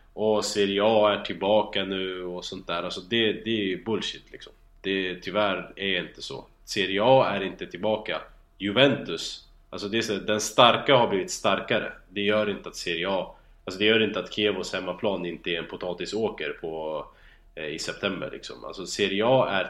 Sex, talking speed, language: male, 190 wpm, Swedish